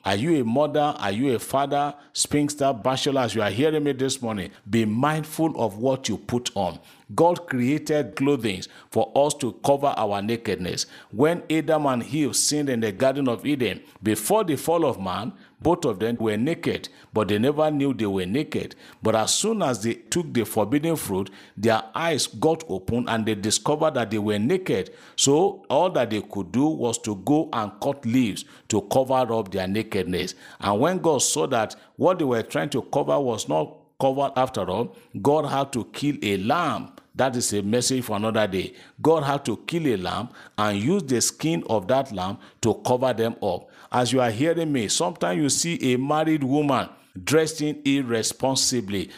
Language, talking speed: English, 190 wpm